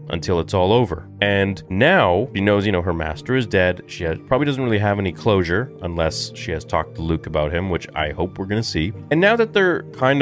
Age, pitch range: 30-49, 90-130 Hz